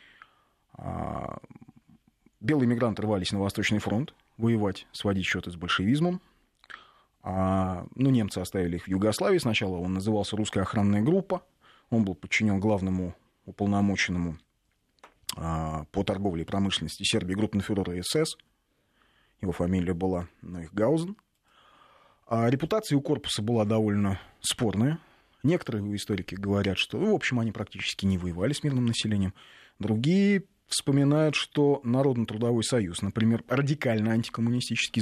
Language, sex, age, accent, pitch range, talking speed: Russian, male, 30-49, native, 95-120 Hz, 125 wpm